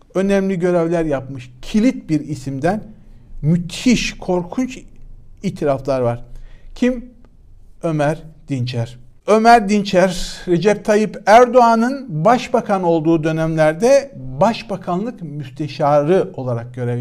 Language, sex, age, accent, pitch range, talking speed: Turkish, male, 60-79, native, 130-205 Hz, 90 wpm